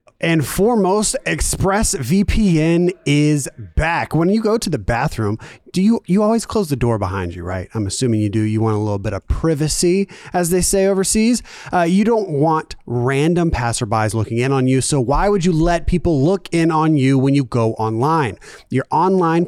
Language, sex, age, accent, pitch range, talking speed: English, male, 30-49, American, 115-180 Hz, 190 wpm